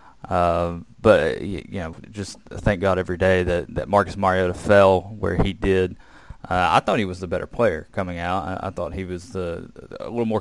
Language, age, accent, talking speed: English, 20-39, American, 215 wpm